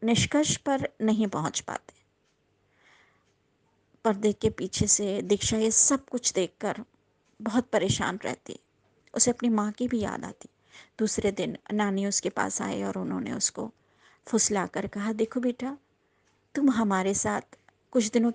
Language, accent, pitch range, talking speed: English, Indian, 195-245 Hz, 145 wpm